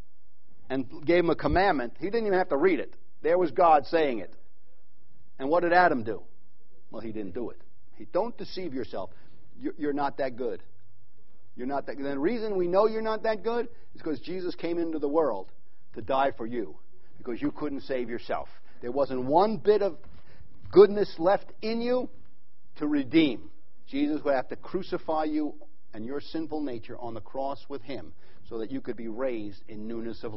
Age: 50-69